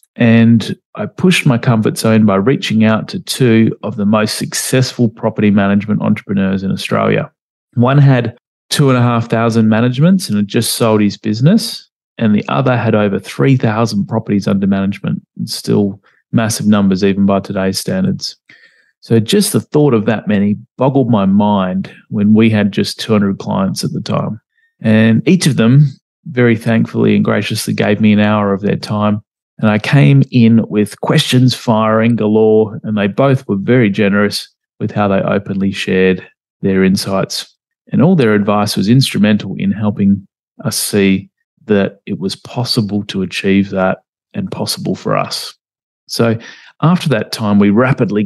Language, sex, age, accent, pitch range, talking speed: English, male, 30-49, Australian, 105-130 Hz, 160 wpm